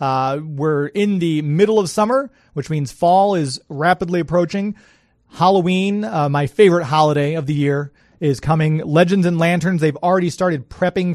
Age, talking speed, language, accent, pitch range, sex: 30-49, 160 wpm, English, American, 145-180 Hz, male